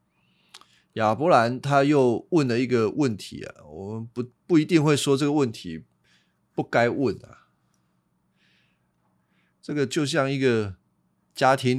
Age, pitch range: 30-49, 100-135 Hz